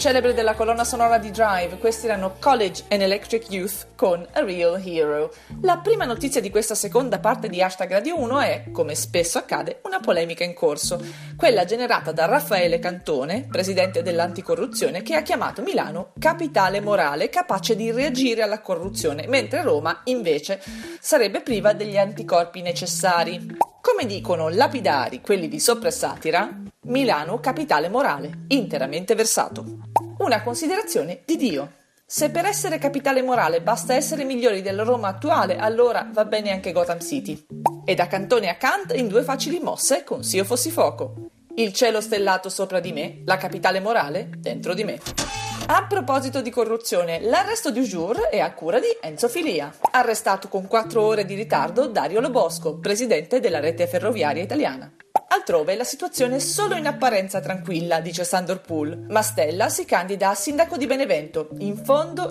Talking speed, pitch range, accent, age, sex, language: 160 wpm, 180-270 Hz, native, 40-59, female, Italian